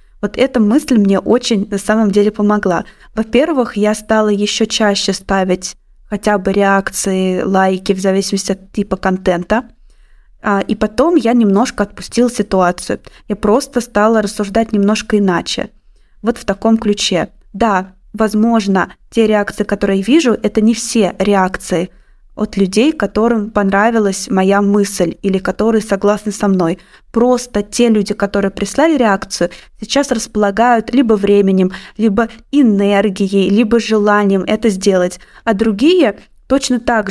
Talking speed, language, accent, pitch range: 135 wpm, Russian, native, 195-225 Hz